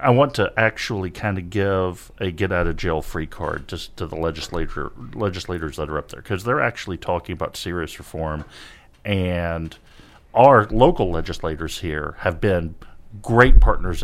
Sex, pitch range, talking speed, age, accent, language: male, 85-110 Hz, 150 wpm, 50-69, American, English